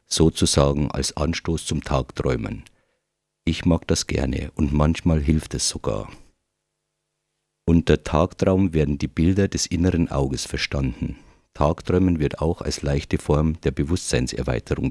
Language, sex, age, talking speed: English, male, 50-69, 125 wpm